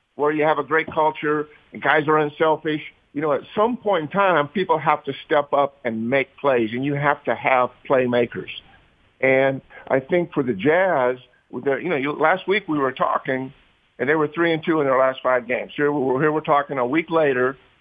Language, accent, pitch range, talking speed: English, American, 130-160 Hz, 210 wpm